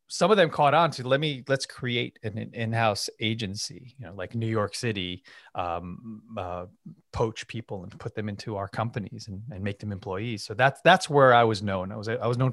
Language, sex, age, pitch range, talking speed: English, male, 30-49, 105-140 Hz, 220 wpm